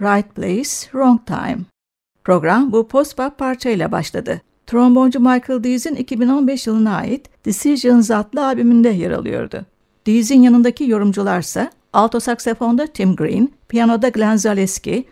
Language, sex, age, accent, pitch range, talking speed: Turkish, female, 60-79, native, 205-245 Hz, 120 wpm